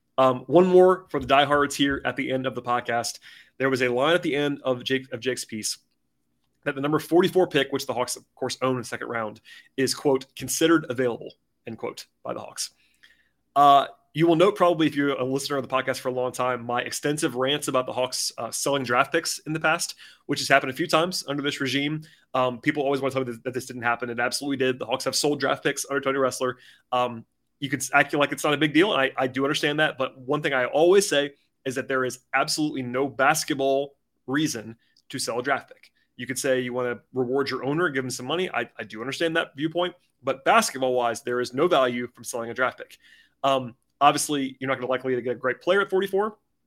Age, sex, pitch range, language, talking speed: 30-49, male, 125-150 Hz, English, 240 wpm